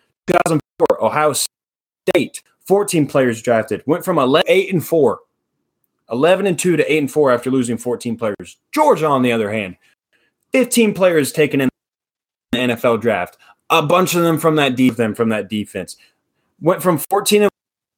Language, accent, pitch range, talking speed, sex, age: English, American, 125-165 Hz, 165 wpm, male, 20-39